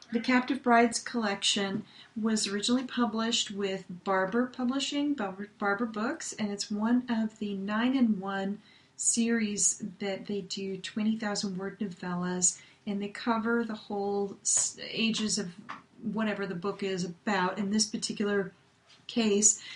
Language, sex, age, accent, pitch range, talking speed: English, female, 40-59, American, 195-230 Hz, 125 wpm